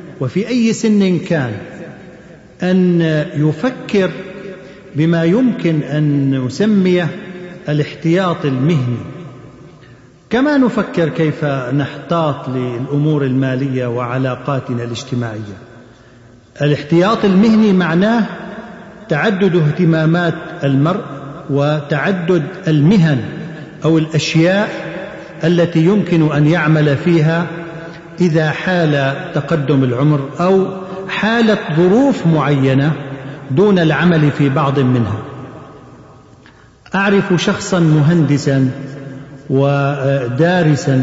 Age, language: 50-69, Arabic